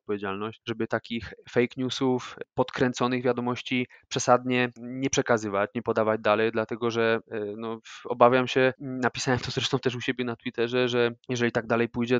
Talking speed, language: 150 wpm, Polish